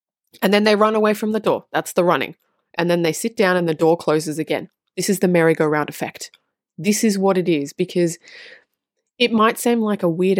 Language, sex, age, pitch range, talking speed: English, female, 20-39, 165-220 Hz, 220 wpm